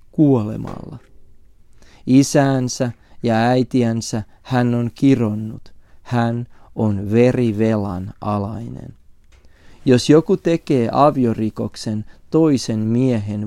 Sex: male